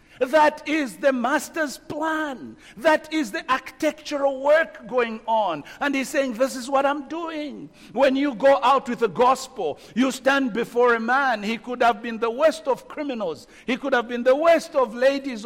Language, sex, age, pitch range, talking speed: English, male, 60-79, 230-300 Hz, 185 wpm